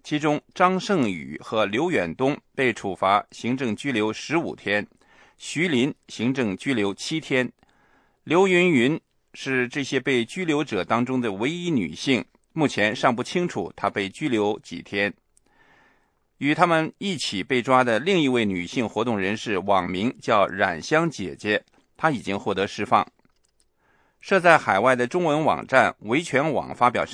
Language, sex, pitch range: English, male, 115-160 Hz